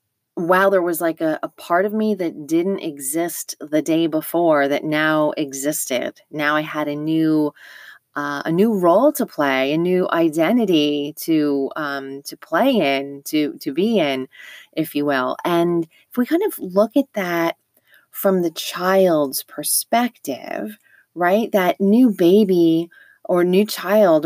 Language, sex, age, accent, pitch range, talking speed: English, female, 30-49, American, 155-215 Hz, 155 wpm